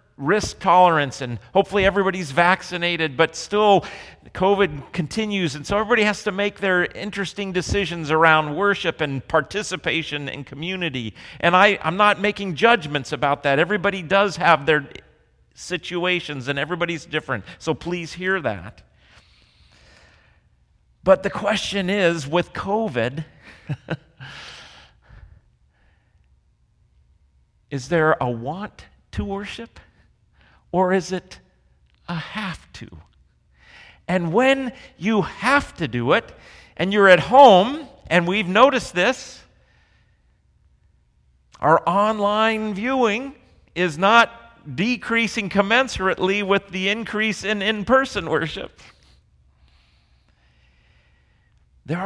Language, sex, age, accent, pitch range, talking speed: English, male, 40-59, American, 145-205 Hz, 105 wpm